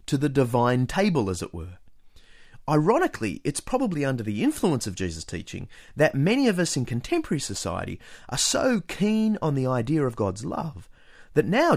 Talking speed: 175 wpm